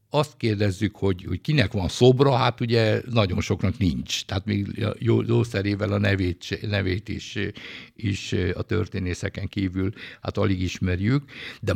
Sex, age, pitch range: male, 60-79, 95-115 Hz